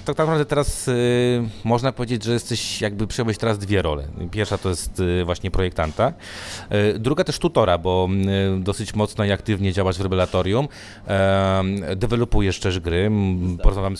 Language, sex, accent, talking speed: Polish, male, native, 165 wpm